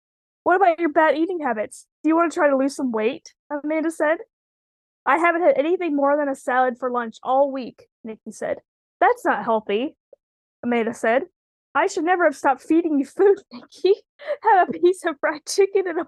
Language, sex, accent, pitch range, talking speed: English, female, American, 275-345 Hz, 200 wpm